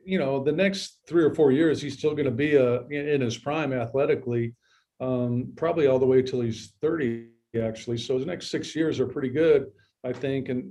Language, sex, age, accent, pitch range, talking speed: English, male, 40-59, American, 130-145 Hz, 215 wpm